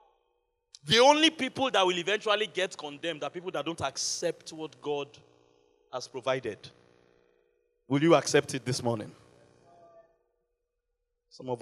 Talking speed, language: 130 wpm, English